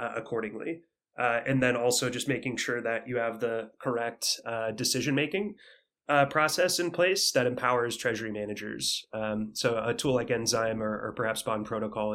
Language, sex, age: English, male, 20-39